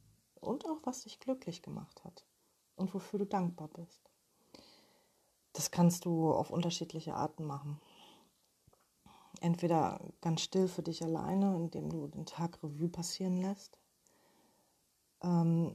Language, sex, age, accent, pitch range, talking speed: German, female, 30-49, German, 165-185 Hz, 125 wpm